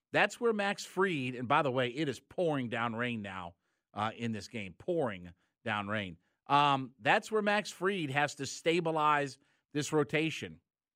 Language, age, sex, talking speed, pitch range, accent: English, 50-69, male, 170 wpm, 135-175 Hz, American